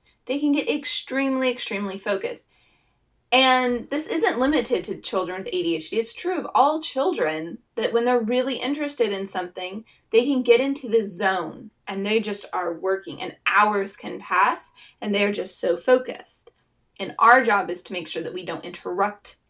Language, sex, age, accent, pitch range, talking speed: English, female, 20-39, American, 185-260 Hz, 175 wpm